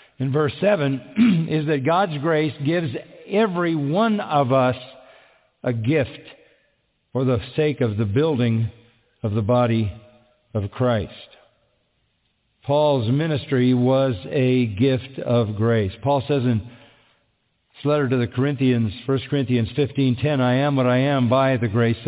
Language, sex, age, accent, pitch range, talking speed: English, male, 50-69, American, 125-175 Hz, 140 wpm